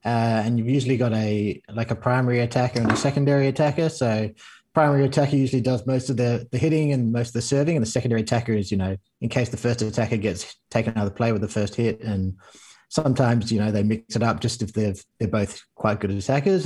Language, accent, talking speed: English, Australian, 240 wpm